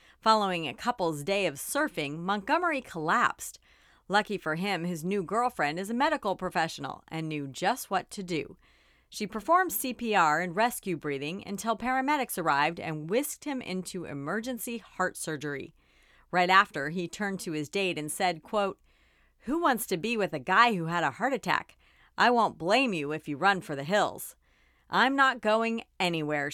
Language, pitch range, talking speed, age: English, 150-235 Hz, 170 wpm, 40-59